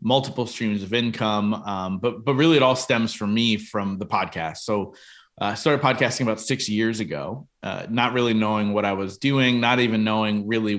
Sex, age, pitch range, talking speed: male, 20-39, 105-120 Hz, 205 wpm